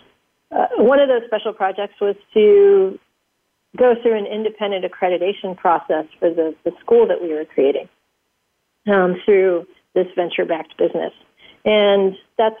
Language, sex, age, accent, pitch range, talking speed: English, female, 50-69, American, 190-225 Hz, 140 wpm